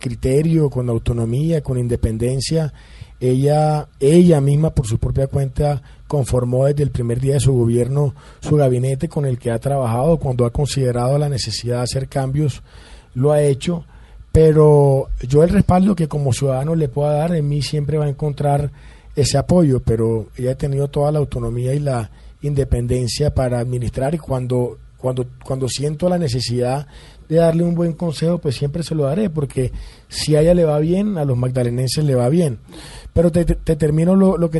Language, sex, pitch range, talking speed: Spanish, male, 125-155 Hz, 185 wpm